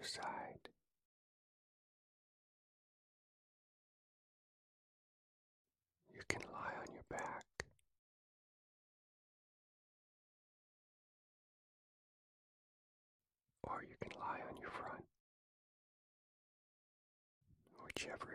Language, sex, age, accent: English, female, 40-59, American